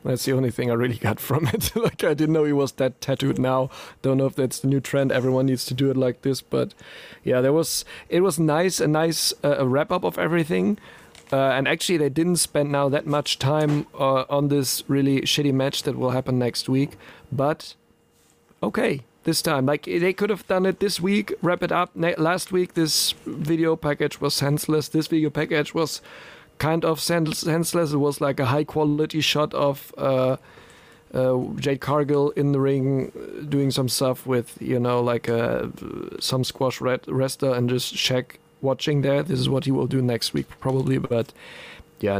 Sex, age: male, 40-59